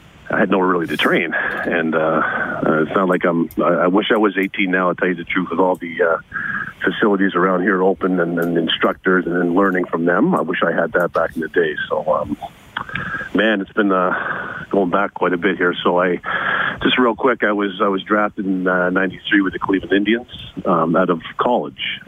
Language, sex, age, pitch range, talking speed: English, male, 40-59, 85-105 Hz, 220 wpm